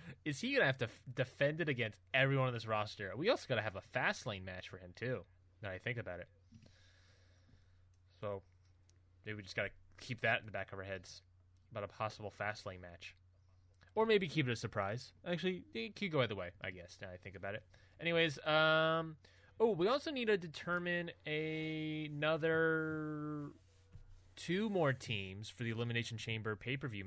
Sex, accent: male, American